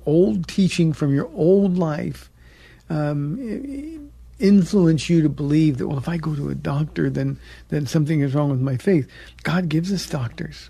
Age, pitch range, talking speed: 50-69, 135-165 Hz, 175 wpm